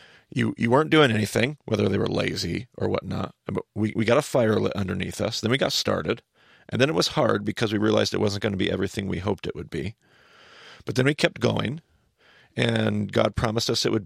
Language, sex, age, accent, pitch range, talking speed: English, male, 40-59, American, 100-125 Hz, 230 wpm